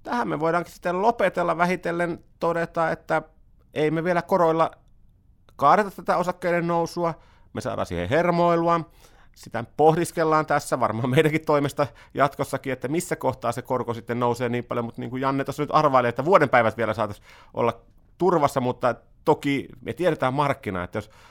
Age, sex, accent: 30-49, male, native